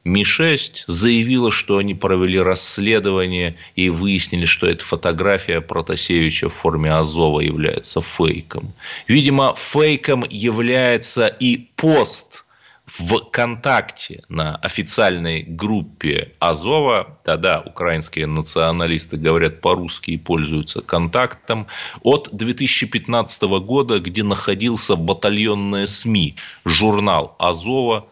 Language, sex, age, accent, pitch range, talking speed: Russian, male, 30-49, native, 85-120 Hz, 95 wpm